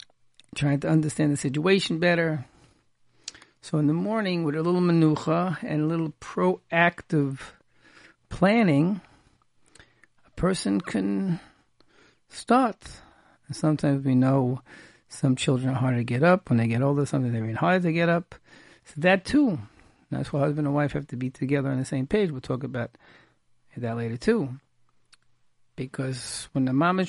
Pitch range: 130-170 Hz